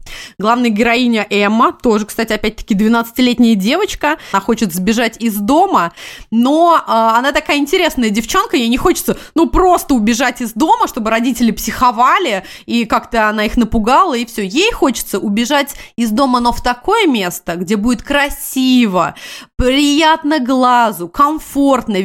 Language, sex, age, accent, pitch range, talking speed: Russian, female, 20-39, native, 225-300 Hz, 140 wpm